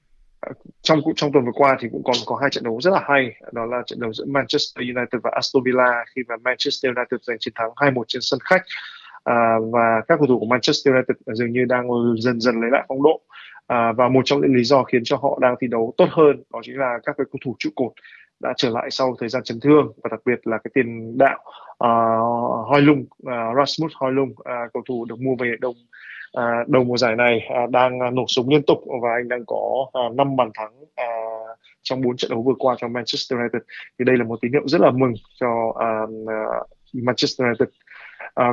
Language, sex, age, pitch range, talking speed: Vietnamese, male, 20-39, 120-135 Hz, 235 wpm